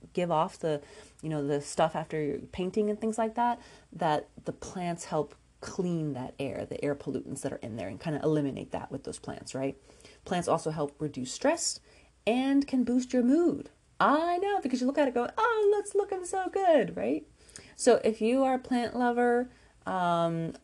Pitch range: 170-240 Hz